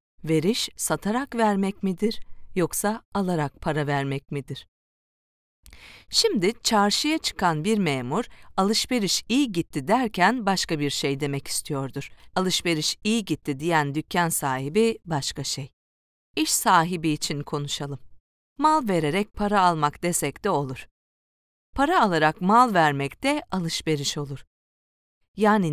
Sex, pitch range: female, 145-220 Hz